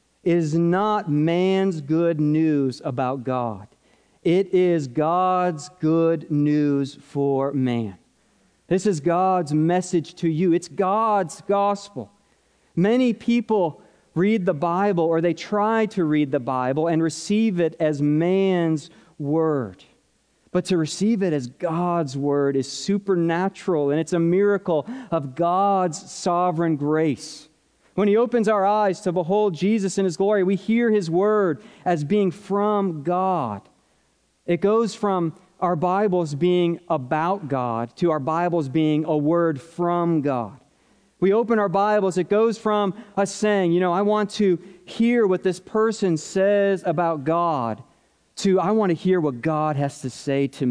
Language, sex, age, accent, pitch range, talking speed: English, male, 40-59, American, 155-195 Hz, 150 wpm